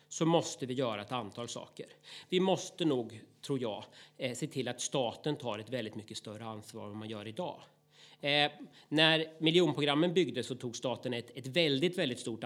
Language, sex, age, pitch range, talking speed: Swedish, male, 40-59, 115-145 Hz, 185 wpm